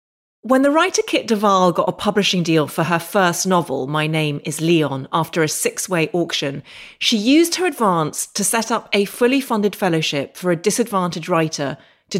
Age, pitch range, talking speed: 30-49, 165-220 Hz, 180 wpm